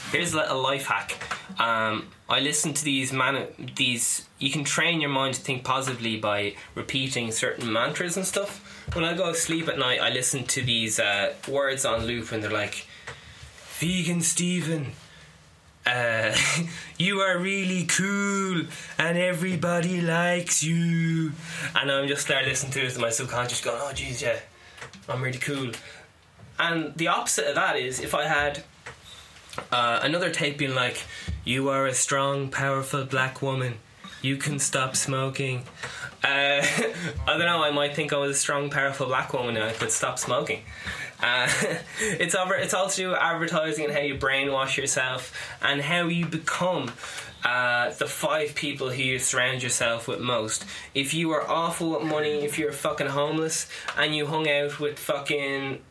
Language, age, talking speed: English, 20-39, 170 wpm